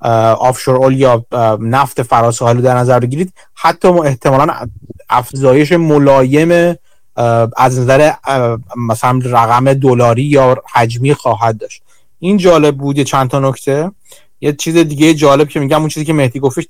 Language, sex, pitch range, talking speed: Persian, male, 125-155 Hz, 150 wpm